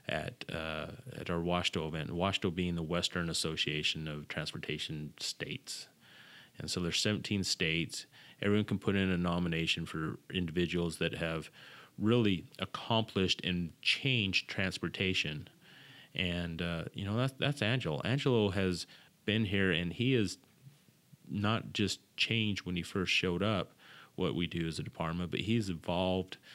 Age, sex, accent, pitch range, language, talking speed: 30-49, male, American, 85-100 Hz, English, 145 wpm